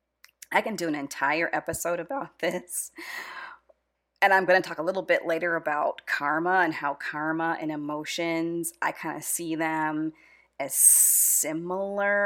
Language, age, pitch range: English, 30-49, 155-185 Hz